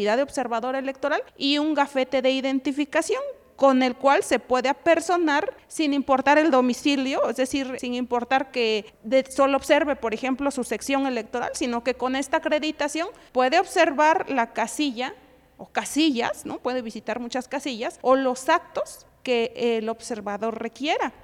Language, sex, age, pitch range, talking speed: Spanish, female, 40-59, 245-300 Hz, 145 wpm